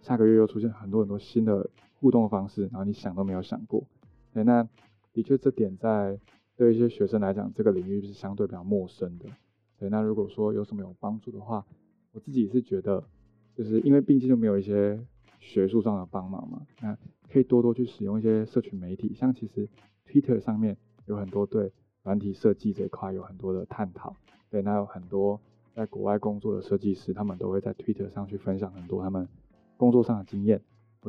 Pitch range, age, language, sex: 100-115 Hz, 20-39, Chinese, male